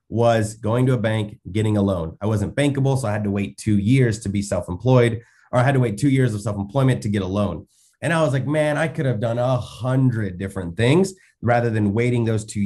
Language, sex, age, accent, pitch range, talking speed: English, male, 30-49, American, 105-135 Hz, 245 wpm